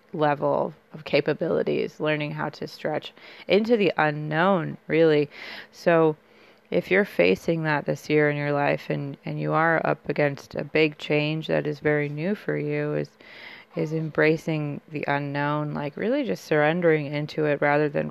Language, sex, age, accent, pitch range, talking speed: English, female, 30-49, American, 150-170 Hz, 160 wpm